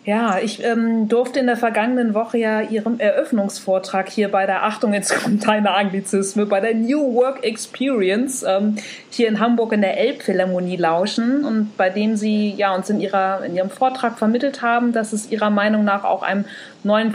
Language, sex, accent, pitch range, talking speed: German, female, German, 205-240 Hz, 180 wpm